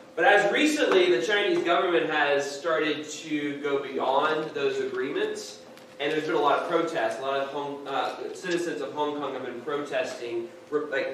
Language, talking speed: English, 180 wpm